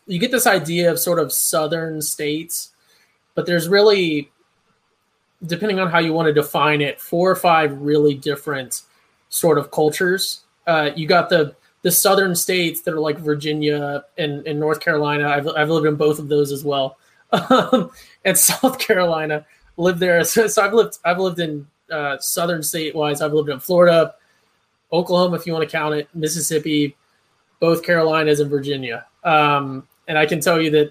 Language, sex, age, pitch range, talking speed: English, male, 20-39, 150-175 Hz, 180 wpm